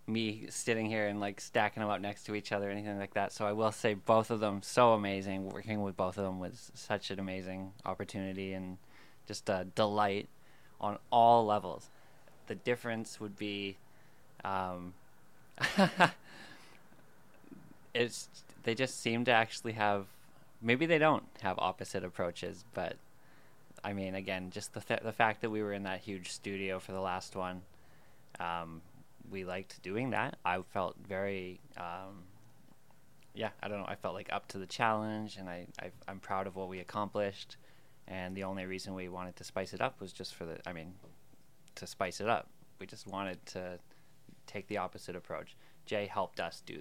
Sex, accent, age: male, American, 20-39